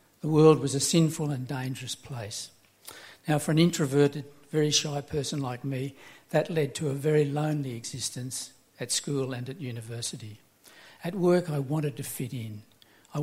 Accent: Australian